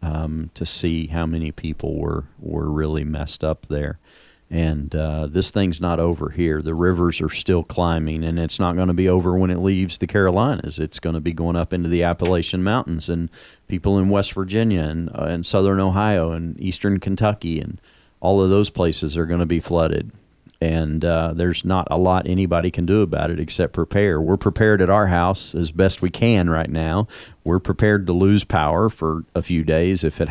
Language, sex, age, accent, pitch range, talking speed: English, male, 40-59, American, 80-100 Hz, 205 wpm